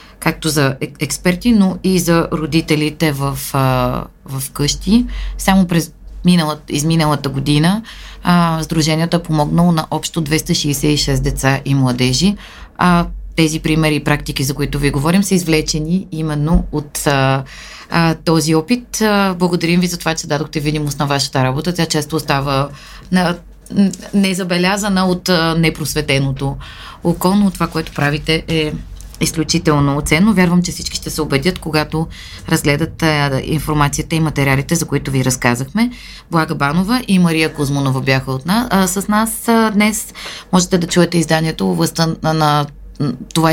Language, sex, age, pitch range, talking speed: Bulgarian, female, 30-49, 145-175 Hz, 135 wpm